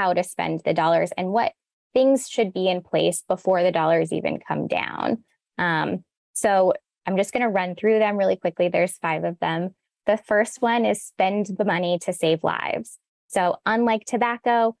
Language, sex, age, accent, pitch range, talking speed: English, female, 10-29, American, 180-225 Hz, 185 wpm